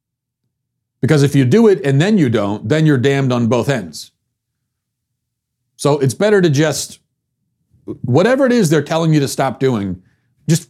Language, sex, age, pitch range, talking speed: English, male, 40-59, 120-160 Hz, 170 wpm